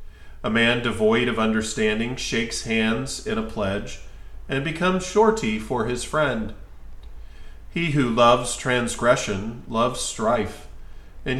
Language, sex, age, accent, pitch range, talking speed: English, male, 40-59, American, 90-130 Hz, 120 wpm